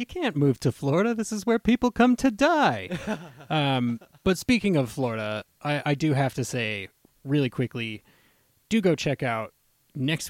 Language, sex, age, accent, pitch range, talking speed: English, male, 30-49, American, 110-135 Hz, 175 wpm